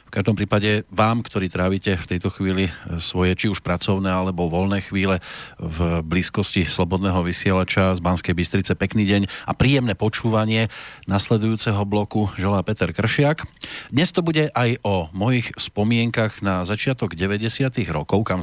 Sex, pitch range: male, 90-115 Hz